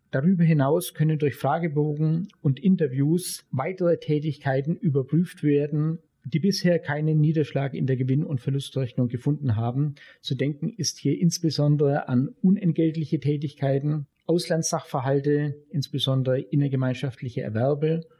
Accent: German